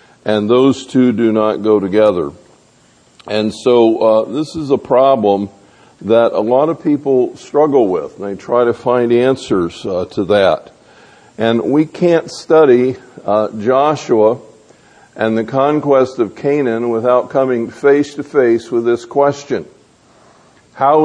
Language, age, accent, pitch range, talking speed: English, 50-69, American, 105-130 Hz, 145 wpm